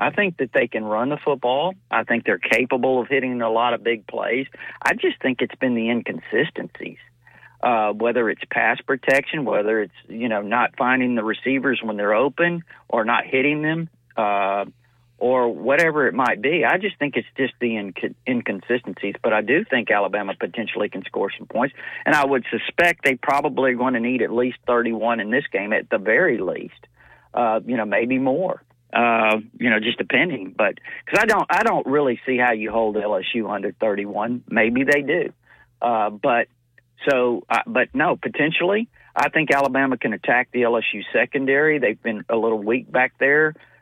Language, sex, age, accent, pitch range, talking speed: English, male, 40-59, American, 115-140 Hz, 190 wpm